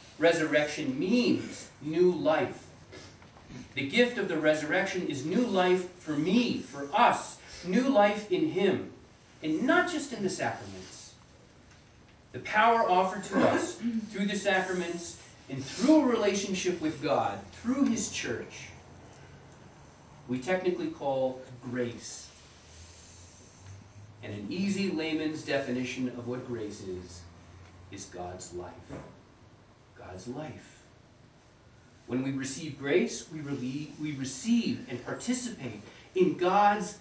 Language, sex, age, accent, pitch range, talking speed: English, male, 40-59, American, 120-185 Hz, 115 wpm